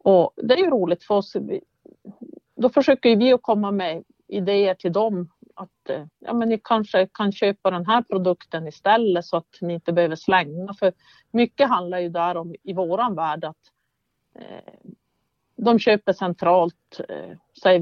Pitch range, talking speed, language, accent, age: 175-230 Hz, 160 wpm, English, Swedish, 50-69